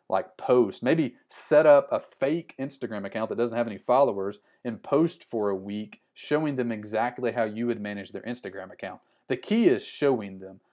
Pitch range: 105-135 Hz